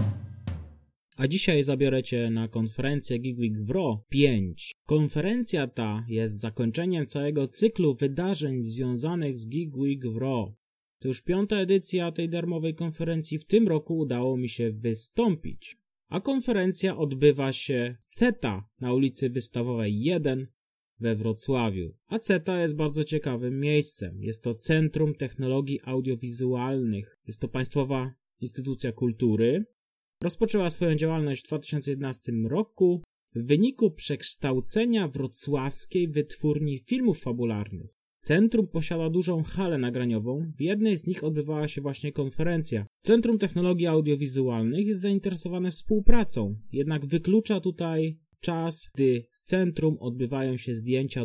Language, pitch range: Polish, 120-170 Hz